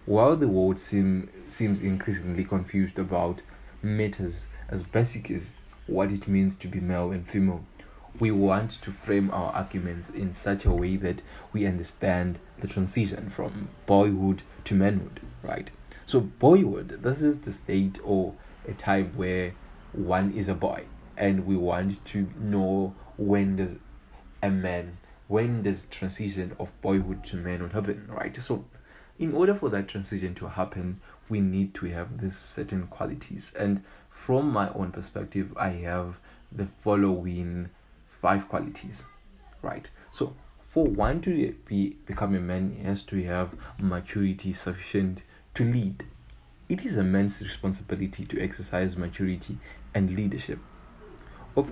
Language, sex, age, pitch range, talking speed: English, male, 20-39, 90-100 Hz, 145 wpm